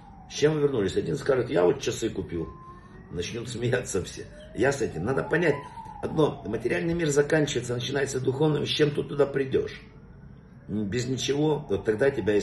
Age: 50-69